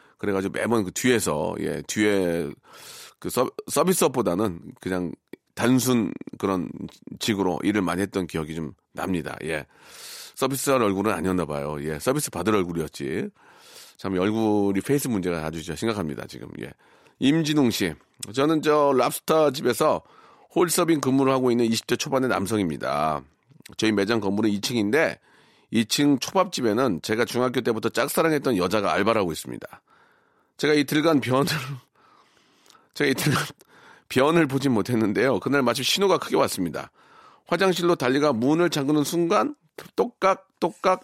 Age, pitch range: 40-59, 105-155 Hz